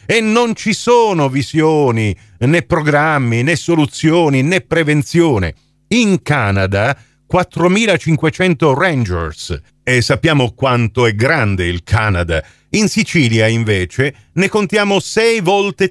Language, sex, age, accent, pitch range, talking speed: Italian, male, 40-59, native, 115-170 Hz, 110 wpm